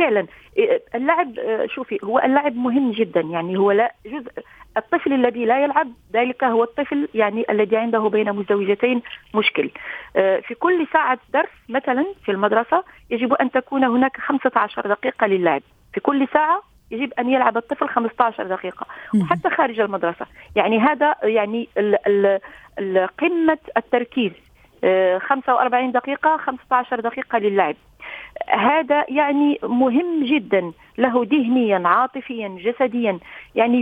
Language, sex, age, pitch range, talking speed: Arabic, female, 40-59, 225-285 Hz, 120 wpm